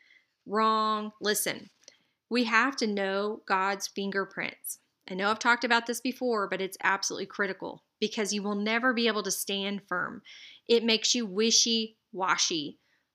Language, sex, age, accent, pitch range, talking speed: English, female, 30-49, American, 195-230 Hz, 145 wpm